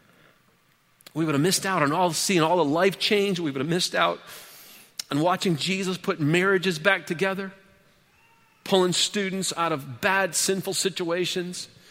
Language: English